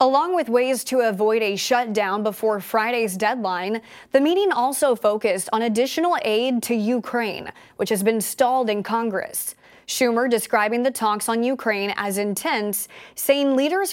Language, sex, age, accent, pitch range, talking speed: English, female, 20-39, American, 210-255 Hz, 150 wpm